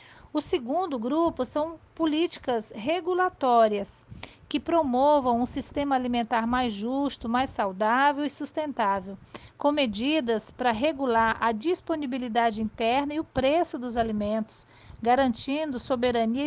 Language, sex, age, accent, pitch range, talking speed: Portuguese, female, 50-69, Brazilian, 235-300 Hz, 115 wpm